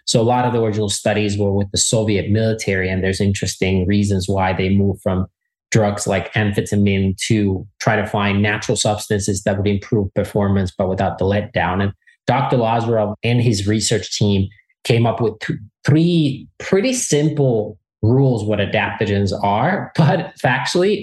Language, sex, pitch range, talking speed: English, male, 100-130 Hz, 165 wpm